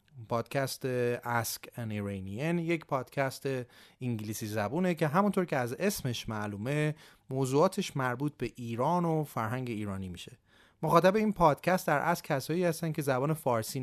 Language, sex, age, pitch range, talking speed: Persian, male, 30-49, 115-160 Hz, 135 wpm